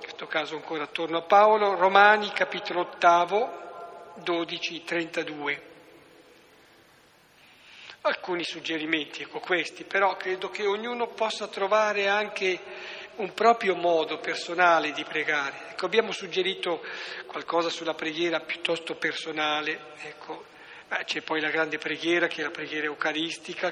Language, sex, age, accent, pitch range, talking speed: Italian, male, 50-69, native, 160-185 Hz, 120 wpm